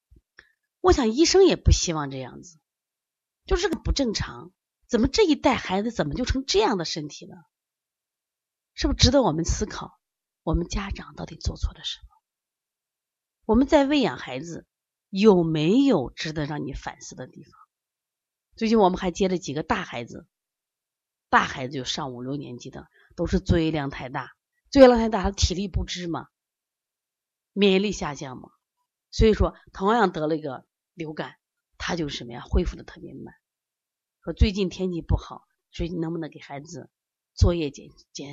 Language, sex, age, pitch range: Chinese, female, 30-49, 145-210 Hz